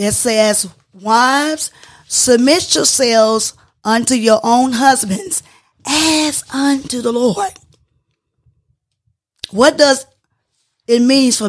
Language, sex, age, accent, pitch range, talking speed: English, female, 20-39, American, 210-255 Hz, 95 wpm